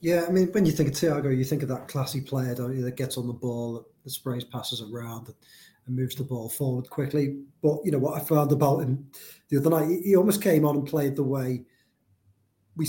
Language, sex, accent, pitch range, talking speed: English, male, British, 125-150 Hz, 235 wpm